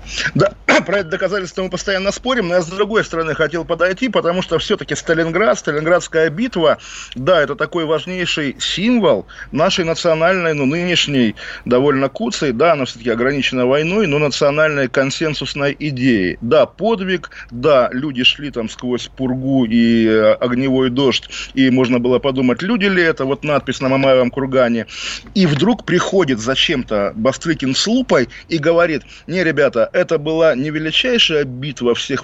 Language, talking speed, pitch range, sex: Russian, 150 wpm, 135-170 Hz, male